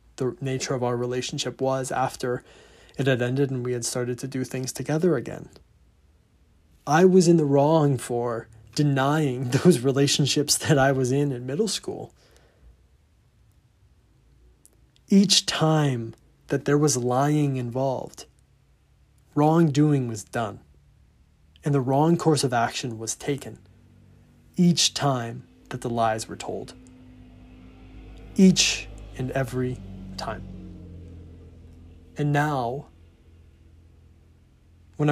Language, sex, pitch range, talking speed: English, male, 95-145 Hz, 115 wpm